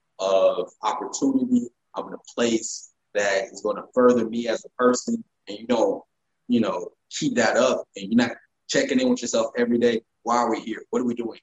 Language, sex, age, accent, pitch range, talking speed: English, male, 20-39, American, 150-245 Hz, 205 wpm